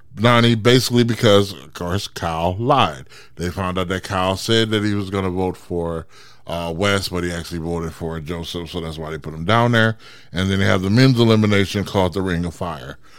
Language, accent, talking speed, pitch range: English, American, 215 wpm, 95-125 Hz